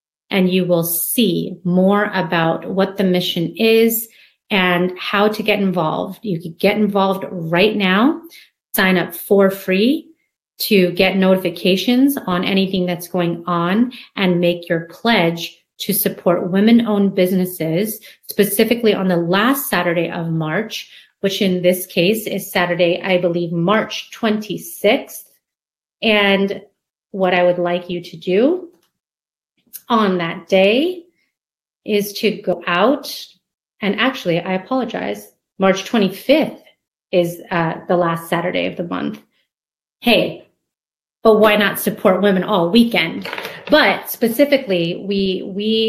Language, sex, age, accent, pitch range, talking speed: English, female, 30-49, American, 175-215 Hz, 130 wpm